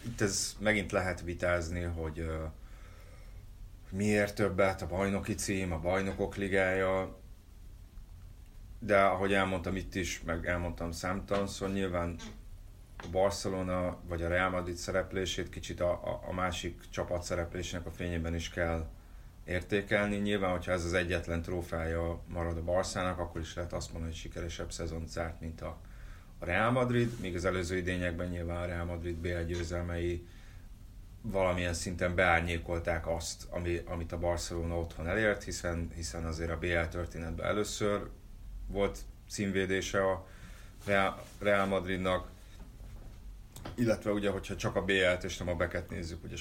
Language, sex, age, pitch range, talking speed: Hungarian, male, 30-49, 85-100 Hz, 140 wpm